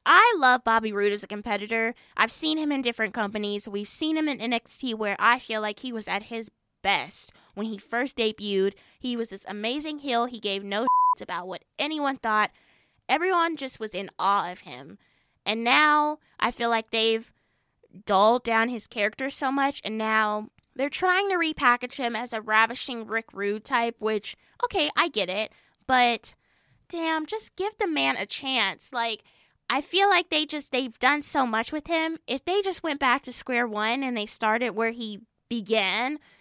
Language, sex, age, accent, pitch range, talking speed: English, female, 20-39, American, 215-295 Hz, 190 wpm